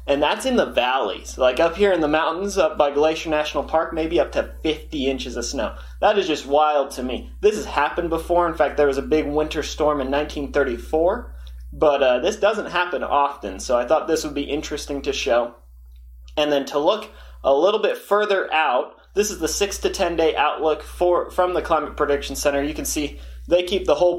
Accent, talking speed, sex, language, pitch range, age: American, 220 wpm, male, English, 125-160 Hz, 30-49